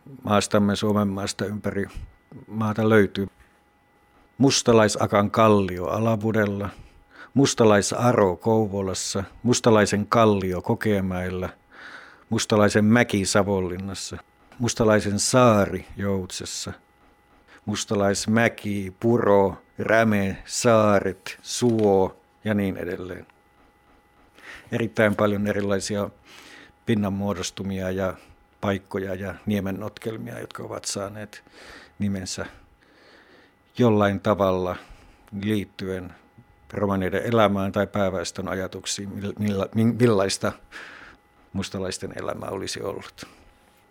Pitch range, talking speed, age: 95-110 Hz, 70 wpm, 60-79